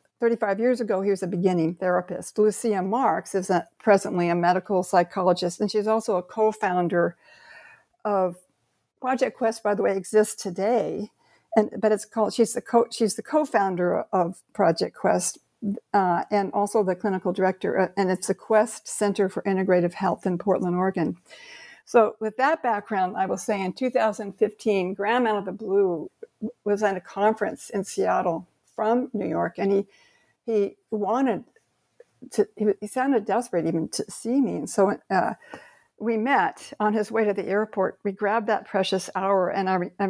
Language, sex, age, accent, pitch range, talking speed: English, female, 60-79, American, 190-230 Hz, 170 wpm